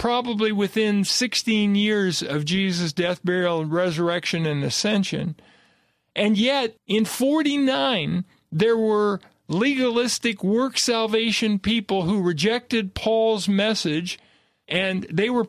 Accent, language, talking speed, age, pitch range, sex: American, English, 110 wpm, 50-69, 185-225 Hz, male